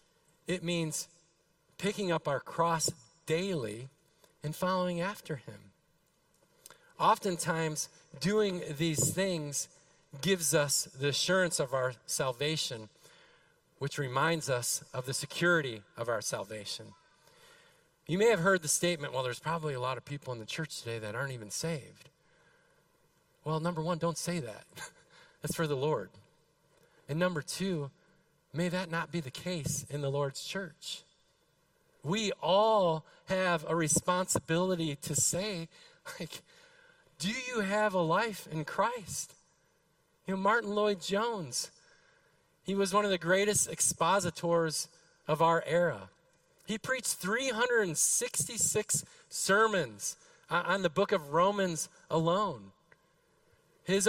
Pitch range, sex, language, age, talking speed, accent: 155-195 Hz, male, English, 40-59, 130 wpm, American